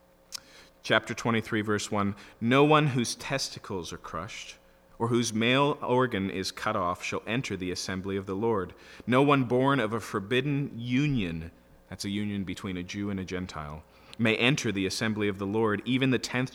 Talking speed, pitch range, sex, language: 180 wpm, 80-120 Hz, male, English